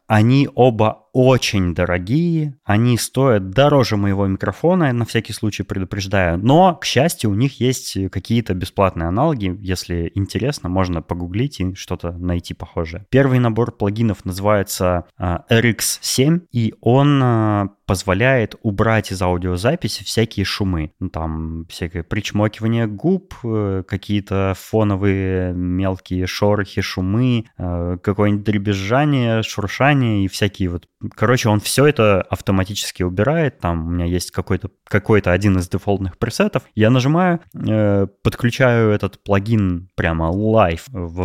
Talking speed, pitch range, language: 120 wpm, 95-120 Hz, Russian